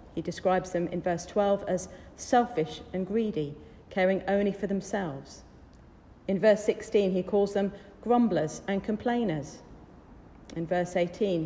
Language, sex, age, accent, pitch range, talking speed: English, female, 40-59, British, 175-215 Hz, 135 wpm